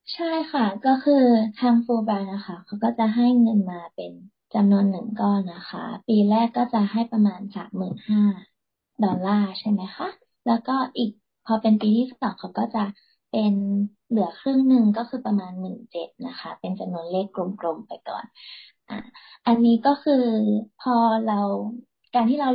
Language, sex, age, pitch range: Thai, female, 20-39, 200-235 Hz